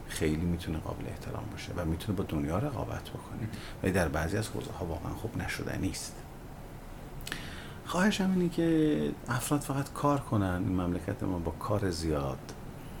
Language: Persian